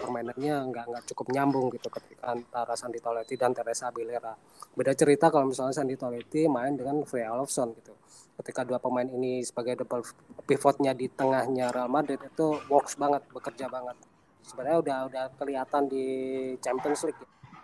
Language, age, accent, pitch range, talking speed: Indonesian, 20-39, native, 120-135 Hz, 155 wpm